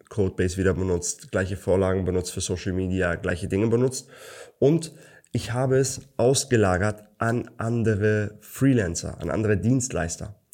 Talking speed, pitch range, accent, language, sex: 130 wpm, 95-115 Hz, German, German, male